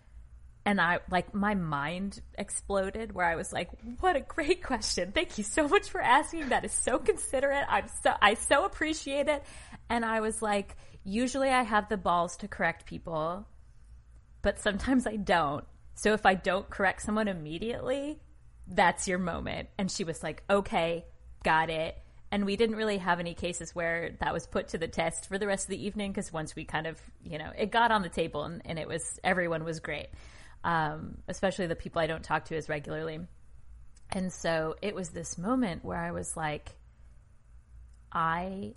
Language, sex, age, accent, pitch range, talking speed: English, female, 20-39, American, 155-205 Hz, 190 wpm